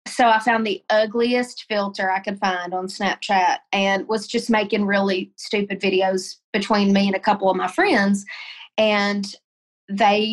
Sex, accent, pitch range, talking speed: female, American, 195-230 Hz, 165 wpm